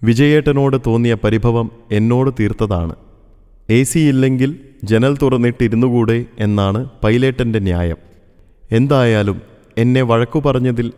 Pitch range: 100-125 Hz